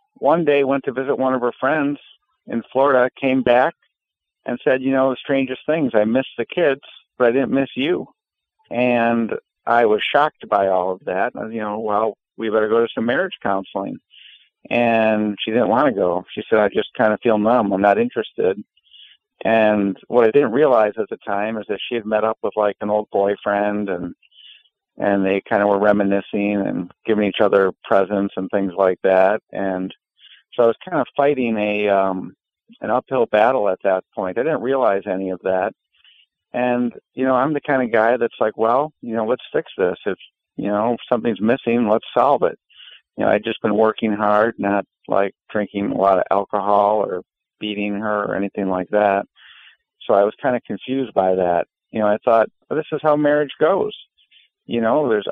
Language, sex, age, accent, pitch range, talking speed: English, male, 50-69, American, 100-125 Hz, 205 wpm